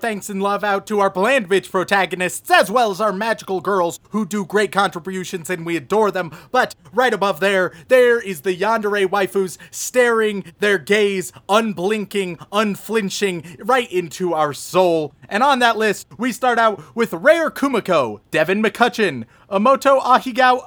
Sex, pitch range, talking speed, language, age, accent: male, 190-260 Hz, 160 wpm, English, 30-49, American